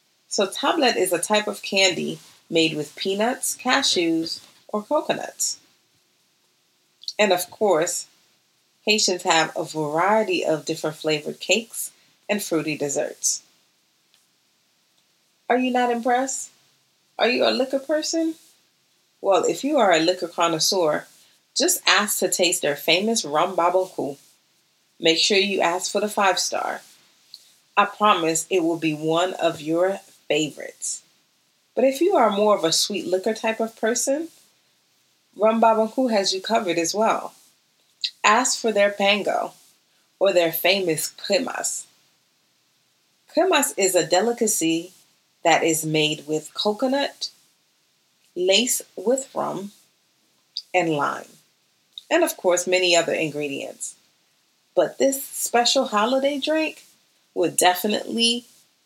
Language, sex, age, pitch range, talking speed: English, female, 30-49, 170-235 Hz, 125 wpm